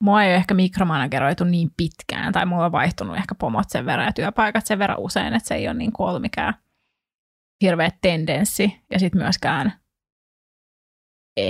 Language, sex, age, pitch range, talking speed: Finnish, female, 20-39, 175-215 Hz, 165 wpm